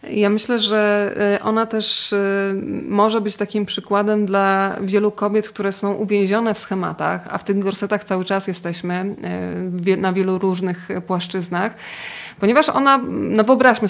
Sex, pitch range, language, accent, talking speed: female, 195-240 Hz, Polish, native, 140 wpm